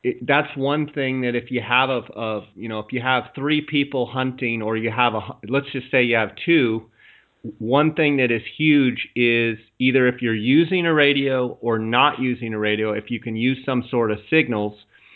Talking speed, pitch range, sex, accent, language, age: 215 wpm, 115-135 Hz, male, American, English, 40-59